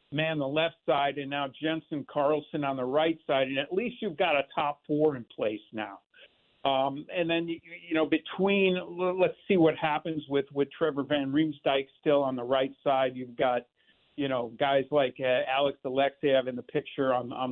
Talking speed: 200 wpm